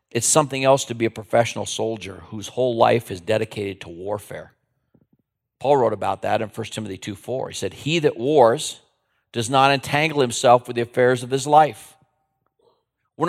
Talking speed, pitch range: 175 wpm, 120-165 Hz